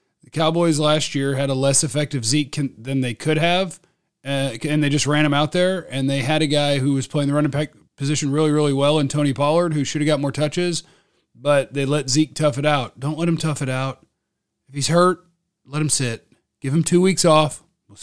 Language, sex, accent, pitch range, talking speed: English, male, American, 135-160 Hz, 235 wpm